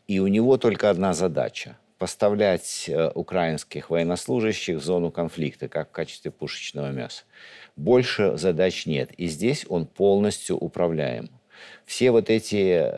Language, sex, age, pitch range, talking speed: Russian, male, 50-69, 80-105 Hz, 135 wpm